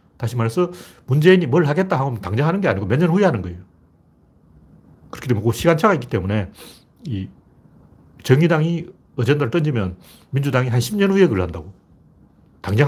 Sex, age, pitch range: male, 40-59, 110-165 Hz